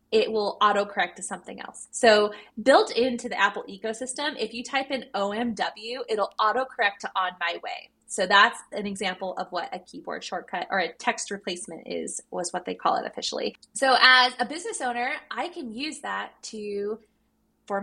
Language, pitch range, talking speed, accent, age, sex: English, 200-255 Hz, 180 wpm, American, 20-39, female